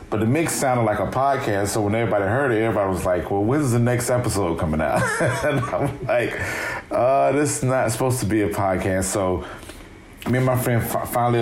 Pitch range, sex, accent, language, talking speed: 90-110 Hz, male, American, English, 215 wpm